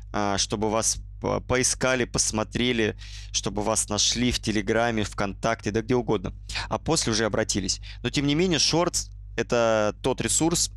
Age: 20-39